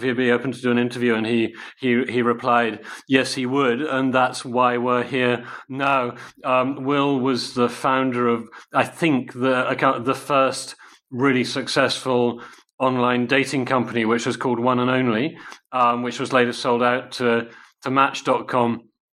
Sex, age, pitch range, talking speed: male, 40-59, 120-130 Hz, 165 wpm